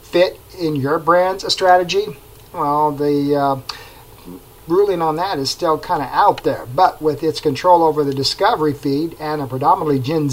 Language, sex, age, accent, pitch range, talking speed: English, male, 50-69, American, 145-190 Hz, 165 wpm